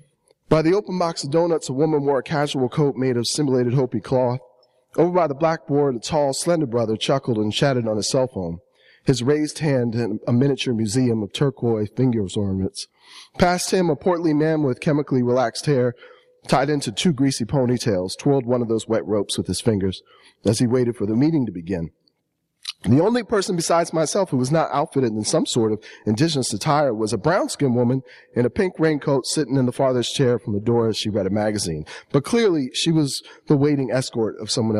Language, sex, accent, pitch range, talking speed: English, male, American, 120-170 Hz, 205 wpm